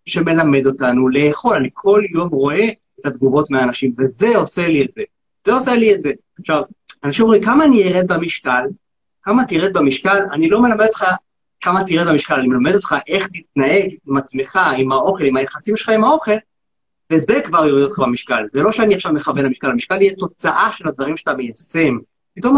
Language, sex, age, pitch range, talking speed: Hebrew, male, 30-49, 145-215 Hz, 190 wpm